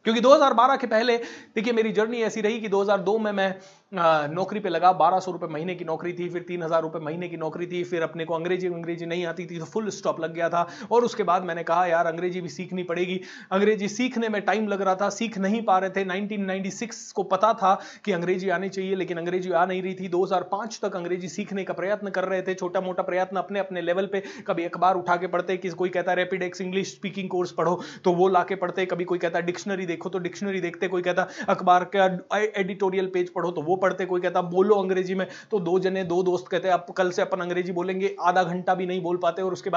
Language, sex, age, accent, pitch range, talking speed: Hindi, male, 30-49, native, 175-195 Hz, 190 wpm